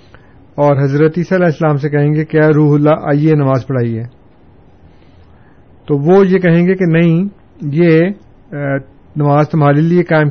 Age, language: 50-69, Urdu